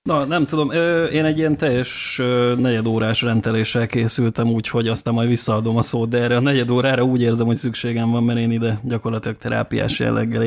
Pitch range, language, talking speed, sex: 110-125 Hz, Hungarian, 185 wpm, male